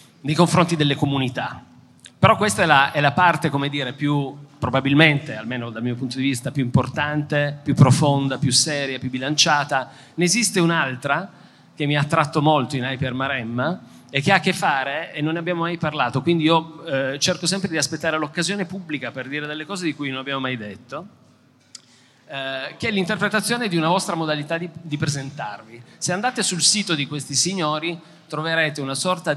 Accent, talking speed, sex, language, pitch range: native, 185 wpm, male, Italian, 135-175 Hz